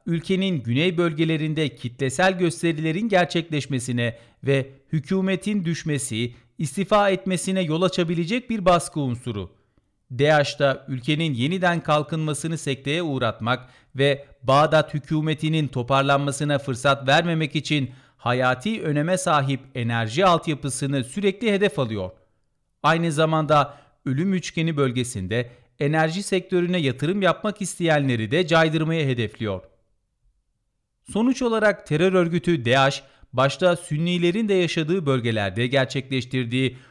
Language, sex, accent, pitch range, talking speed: Turkish, male, native, 130-175 Hz, 100 wpm